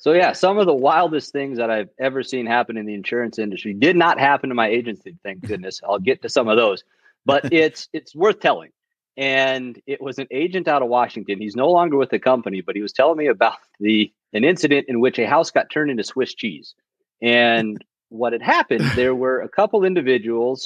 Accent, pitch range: American, 115-155 Hz